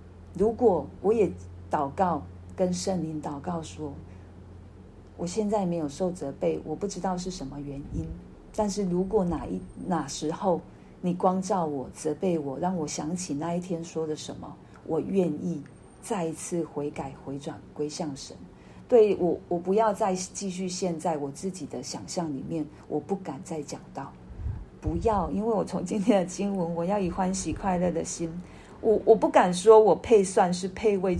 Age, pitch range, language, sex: 40-59, 155-195 Hz, Chinese, female